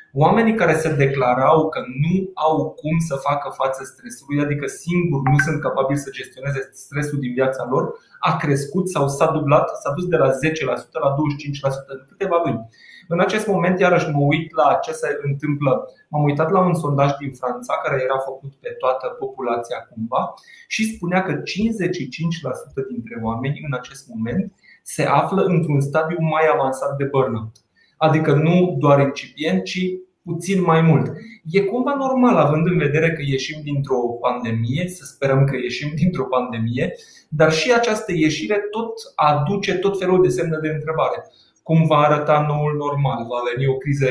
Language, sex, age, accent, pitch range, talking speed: Romanian, male, 20-39, native, 135-175 Hz, 170 wpm